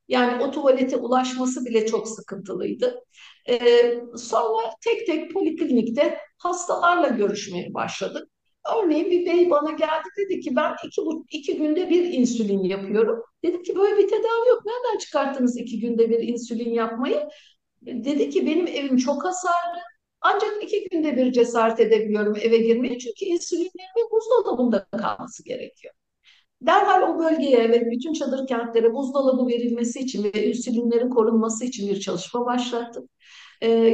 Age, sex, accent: 60-79, female, native